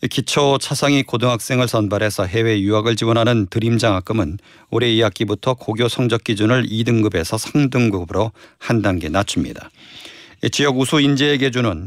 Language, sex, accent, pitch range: Korean, male, native, 105-130 Hz